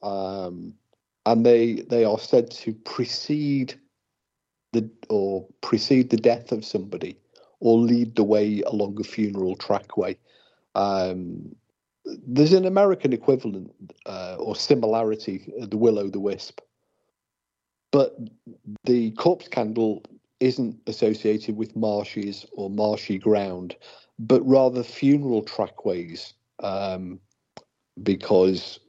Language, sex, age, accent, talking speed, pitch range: English, male, 50-69, British, 110 wpm, 100-120 Hz